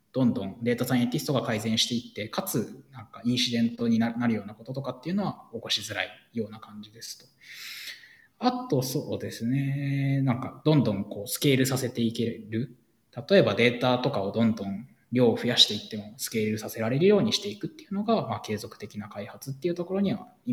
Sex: male